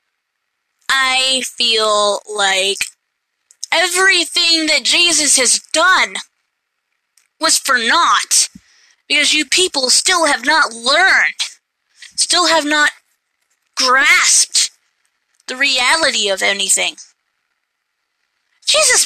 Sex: female